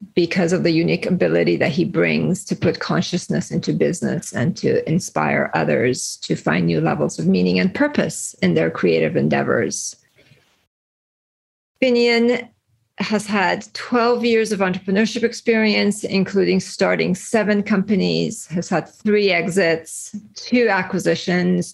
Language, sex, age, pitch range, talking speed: English, female, 40-59, 150-210 Hz, 130 wpm